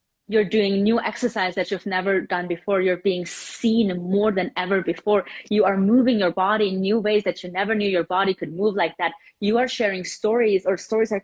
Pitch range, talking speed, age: 190-225 Hz, 220 wpm, 20-39